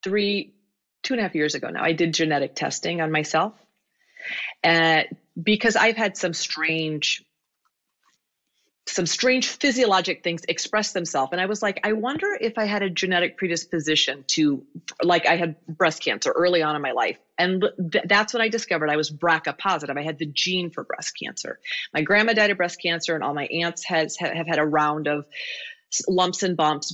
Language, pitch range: English, 160-205 Hz